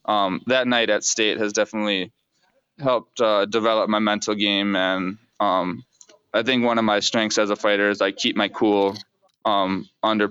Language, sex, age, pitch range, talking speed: English, male, 20-39, 105-115 Hz, 180 wpm